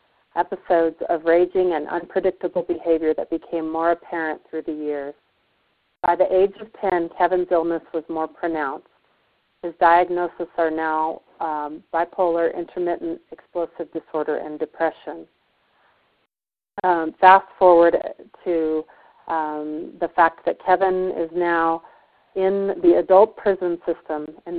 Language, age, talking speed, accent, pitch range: English, 40-59, 125 wpm, American, 165-190 Hz